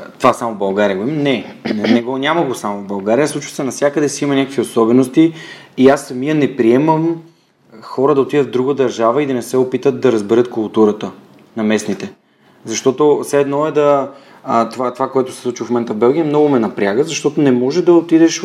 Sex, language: male, Bulgarian